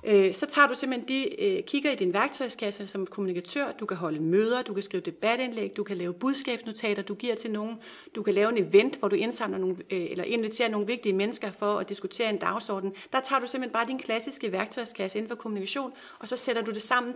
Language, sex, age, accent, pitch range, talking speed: Danish, female, 40-59, native, 200-250 Hz, 220 wpm